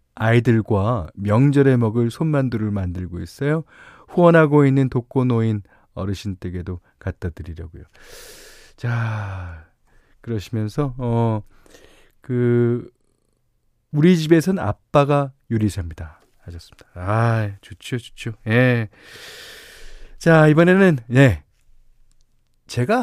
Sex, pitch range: male, 100-150 Hz